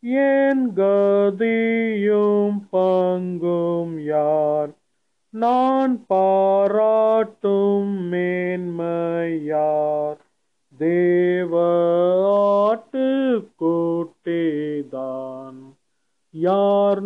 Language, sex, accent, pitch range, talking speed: Tamil, male, native, 165-205 Hz, 35 wpm